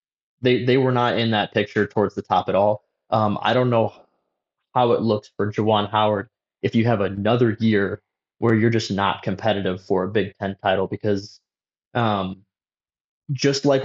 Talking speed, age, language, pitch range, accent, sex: 180 wpm, 20-39, English, 105-120 Hz, American, male